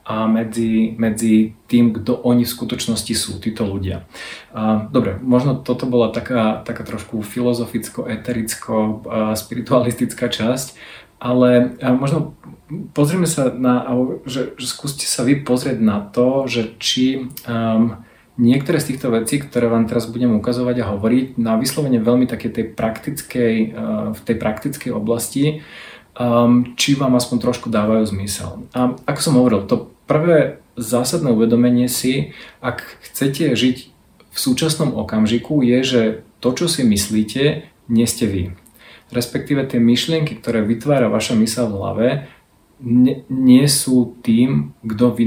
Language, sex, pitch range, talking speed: Slovak, male, 110-130 Hz, 130 wpm